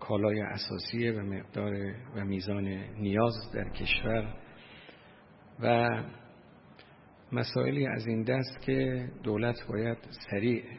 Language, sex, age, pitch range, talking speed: Persian, male, 50-69, 105-125 Hz, 100 wpm